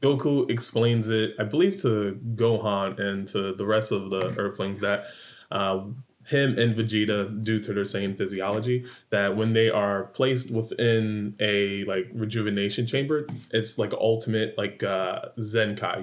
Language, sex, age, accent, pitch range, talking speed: English, male, 20-39, American, 100-115 Hz, 150 wpm